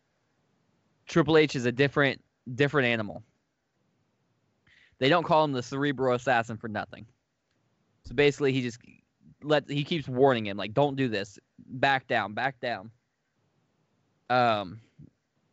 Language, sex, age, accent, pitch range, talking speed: English, male, 10-29, American, 115-140 Hz, 130 wpm